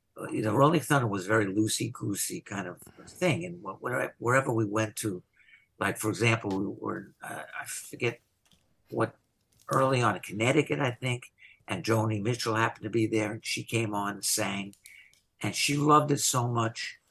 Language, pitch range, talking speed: English, 100-125 Hz, 170 wpm